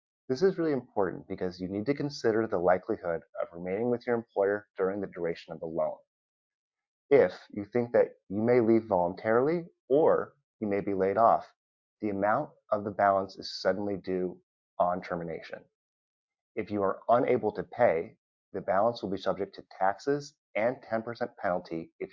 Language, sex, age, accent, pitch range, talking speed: English, male, 30-49, American, 90-120 Hz, 170 wpm